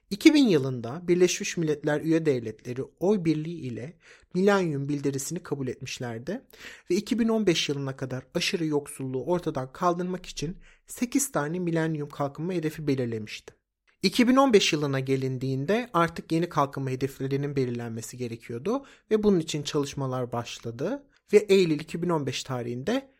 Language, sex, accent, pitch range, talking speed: Turkish, male, native, 135-190 Hz, 120 wpm